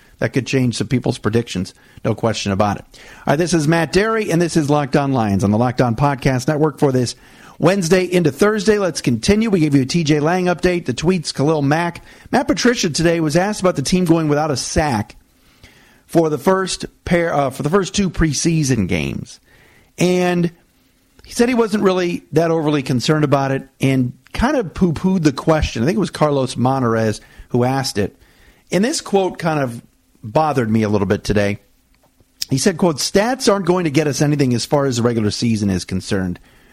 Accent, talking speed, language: American, 205 wpm, English